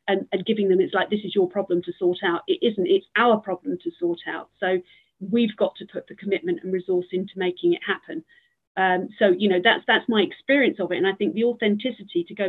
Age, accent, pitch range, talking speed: 40-59, British, 180-215 Hz, 245 wpm